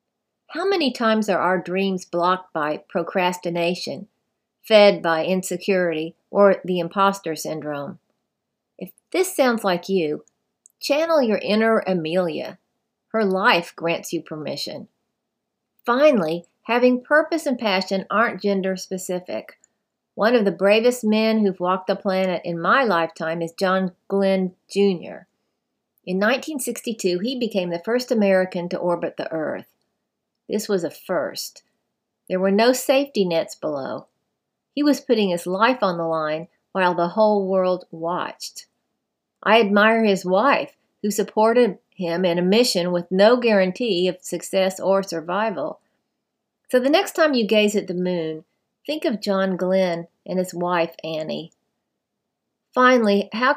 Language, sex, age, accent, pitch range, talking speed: English, female, 50-69, American, 180-230 Hz, 140 wpm